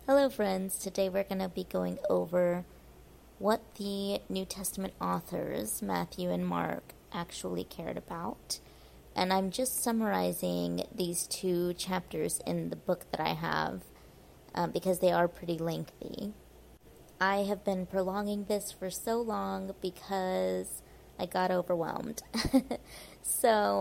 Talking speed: 130 wpm